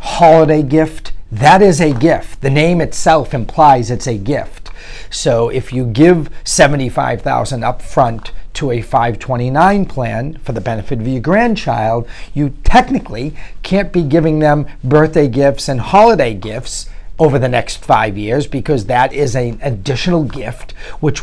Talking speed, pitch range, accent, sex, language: 145 wpm, 115-155 Hz, American, male, English